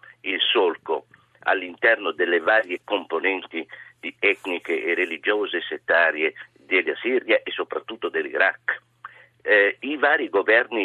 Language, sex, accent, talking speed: Italian, male, native, 105 wpm